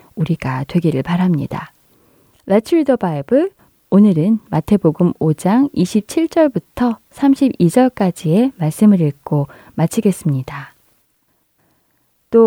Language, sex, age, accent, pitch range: Korean, female, 20-39, native, 155-200 Hz